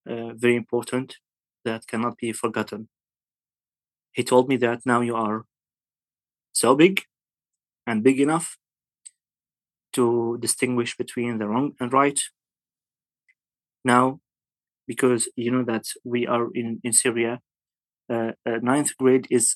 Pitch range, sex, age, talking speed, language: 120-130 Hz, male, 30-49, 125 wpm, English